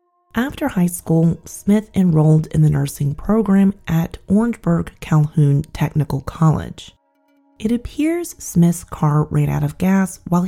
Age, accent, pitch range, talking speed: 30-49, American, 155-220 Hz, 130 wpm